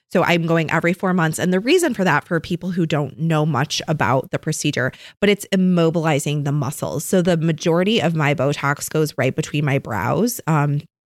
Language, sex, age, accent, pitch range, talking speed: English, female, 20-39, American, 145-180 Hz, 200 wpm